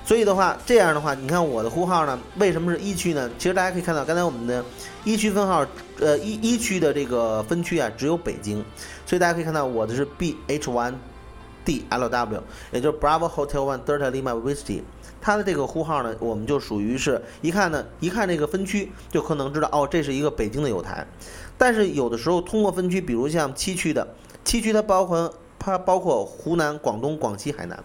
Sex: male